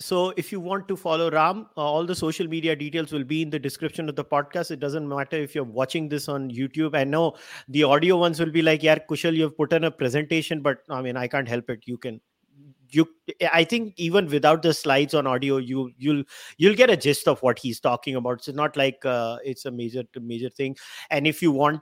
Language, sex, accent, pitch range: English, male, Indian, 130-160 Hz